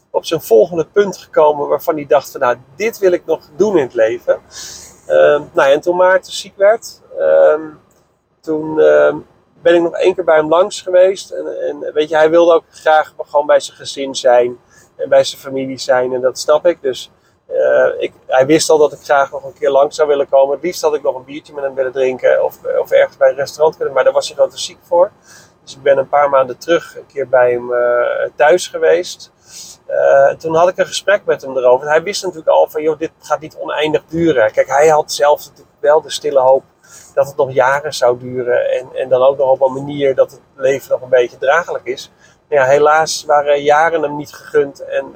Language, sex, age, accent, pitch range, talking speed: Dutch, male, 40-59, Dutch, 135-225 Hz, 225 wpm